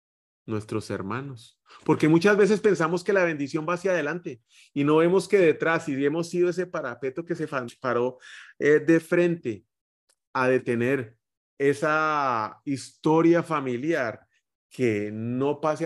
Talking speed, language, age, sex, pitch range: 135 wpm, Spanish, 30-49, male, 105-135 Hz